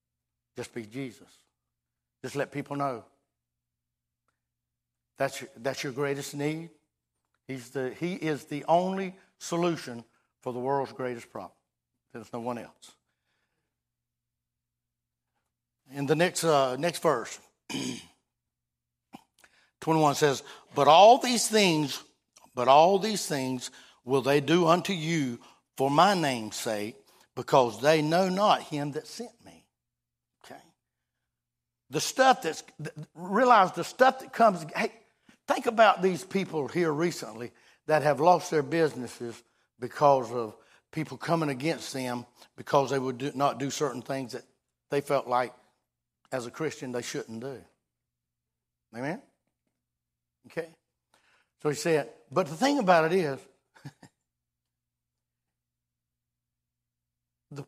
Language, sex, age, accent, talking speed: English, male, 60-79, American, 120 wpm